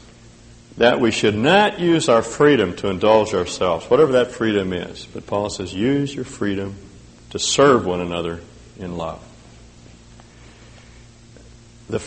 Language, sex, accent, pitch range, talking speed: English, male, American, 100-120 Hz, 135 wpm